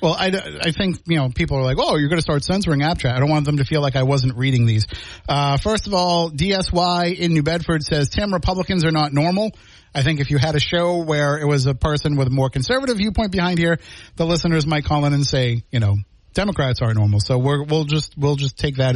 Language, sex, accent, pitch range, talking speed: English, male, American, 140-175 Hz, 255 wpm